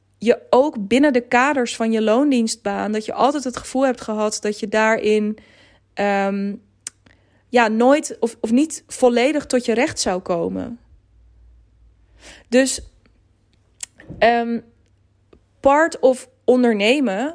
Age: 20-39